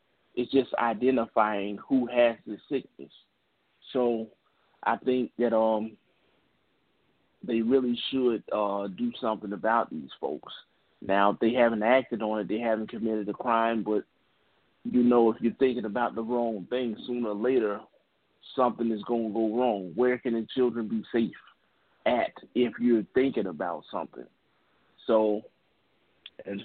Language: English